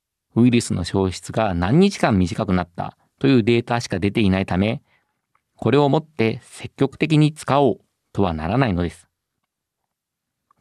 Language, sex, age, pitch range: Japanese, male, 50-69, 100-130 Hz